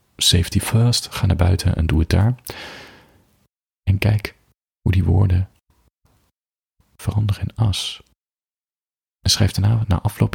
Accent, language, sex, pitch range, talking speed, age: Dutch, Dutch, male, 85-105 Hz, 130 wpm, 40-59